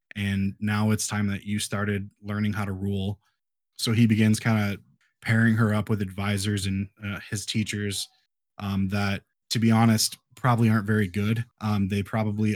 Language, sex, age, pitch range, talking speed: English, male, 20-39, 100-115 Hz, 175 wpm